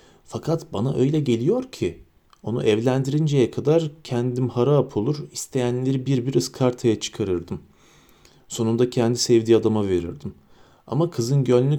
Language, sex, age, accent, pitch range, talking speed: Turkish, male, 40-59, native, 110-130 Hz, 120 wpm